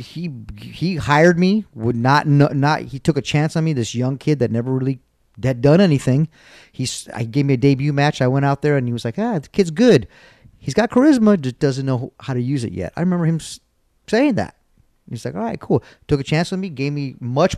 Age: 40-59